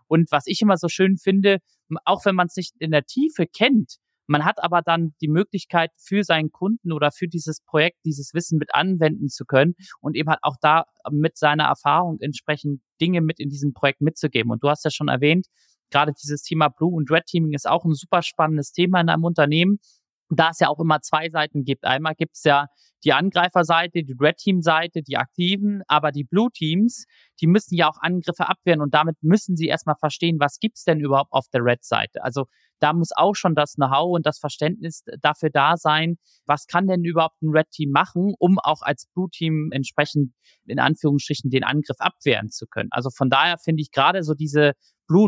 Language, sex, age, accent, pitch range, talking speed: German, male, 30-49, German, 150-180 Hz, 205 wpm